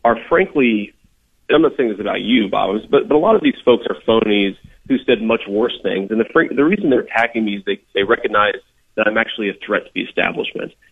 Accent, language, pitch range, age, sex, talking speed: American, English, 105-135 Hz, 40-59, male, 230 wpm